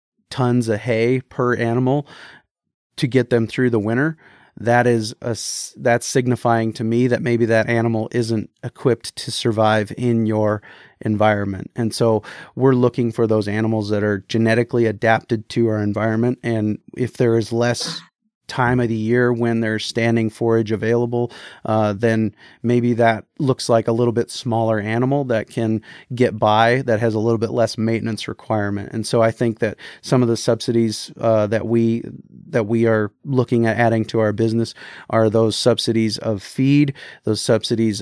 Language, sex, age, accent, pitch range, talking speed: English, male, 30-49, American, 110-125 Hz, 170 wpm